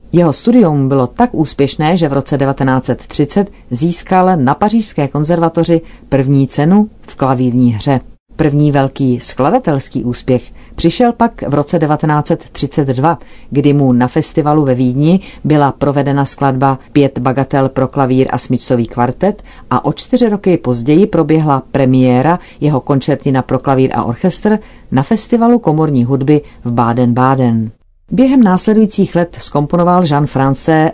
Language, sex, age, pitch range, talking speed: Czech, female, 40-59, 130-160 Hz, 135 wpm